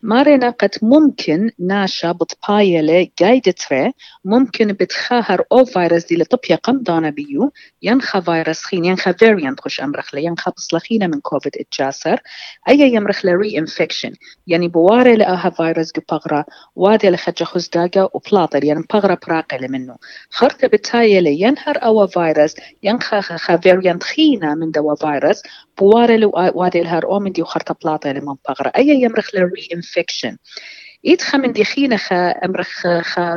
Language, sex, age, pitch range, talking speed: English, female, 40-59, 165-230 Hz, 135 wpm